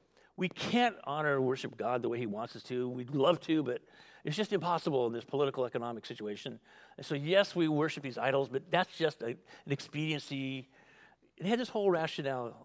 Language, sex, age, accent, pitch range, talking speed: English, male, 50-69, American, 135-190 Hz, 200 wpm